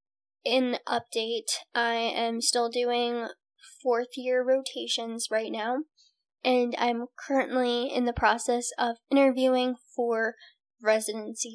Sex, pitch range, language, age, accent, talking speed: female, 225-260 Hz, English, 10-29, American, 110 wpm